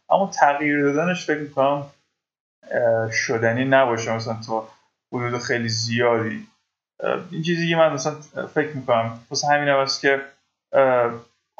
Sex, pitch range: male, 130-160 Hz